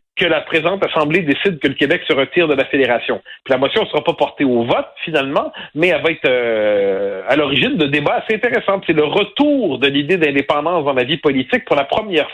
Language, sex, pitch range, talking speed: French, male, 150-205 Hz, 230 wpm